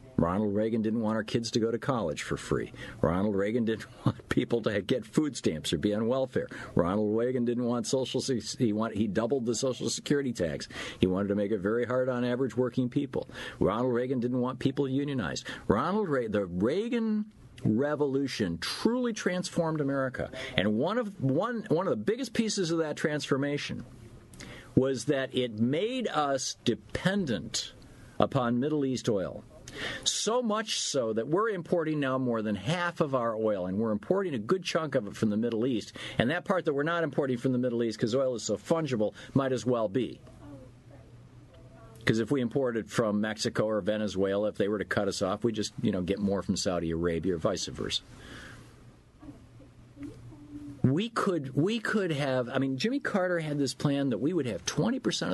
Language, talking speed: English, 190 wpm